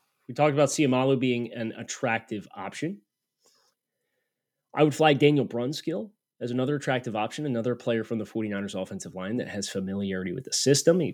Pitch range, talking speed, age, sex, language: 115-145 Hz, 165 wpm, 30-49, male, English